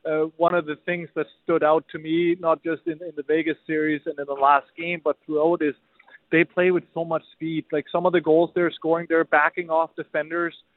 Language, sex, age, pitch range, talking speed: English, male, 20-39, 155-170 Hz, 235 wpm